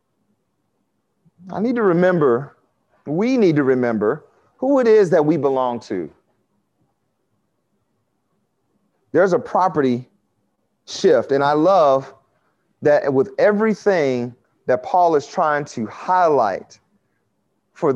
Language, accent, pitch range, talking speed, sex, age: English, American, 125-155 Hz, 105 wpm, male, 40-59